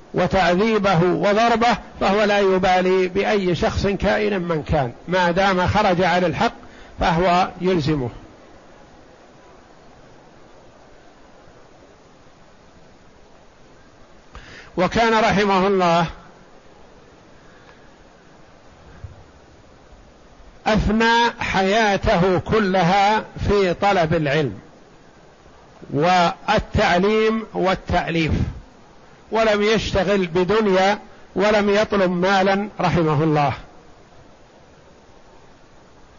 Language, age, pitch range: Arabic, 60-79, 180-215 Hz